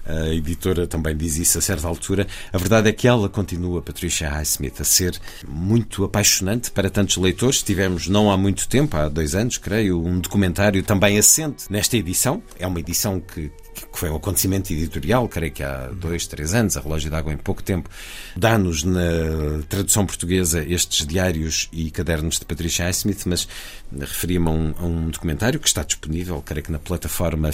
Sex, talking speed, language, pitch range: male, 185 wpm, Portuguese, 80-100 Hz